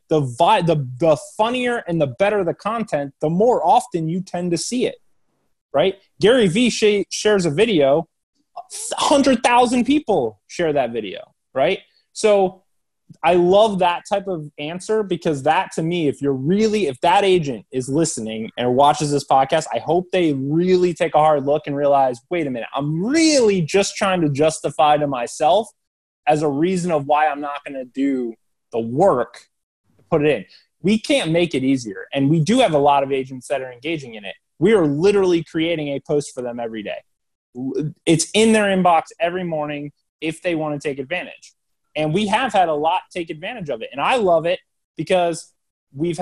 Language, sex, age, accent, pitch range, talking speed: English, male, 20-39, American, 145-190 Hz, 190 wpm